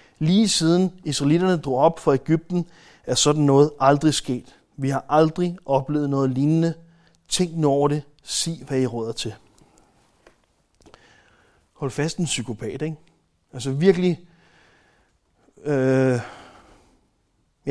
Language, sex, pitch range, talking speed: Danish, male, 130-165 Hz, 115 wpm